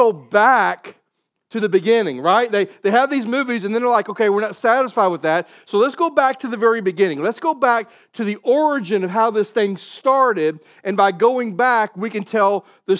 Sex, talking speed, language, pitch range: male, 220 wpm, English, 190-240 Hz